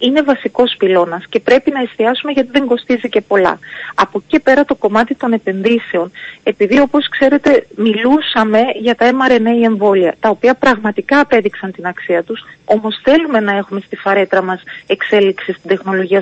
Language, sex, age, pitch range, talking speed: Greek, female, 30-49, 200-265 Hz, 165 wpm